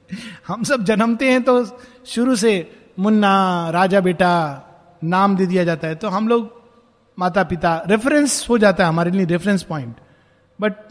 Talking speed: 160 wpm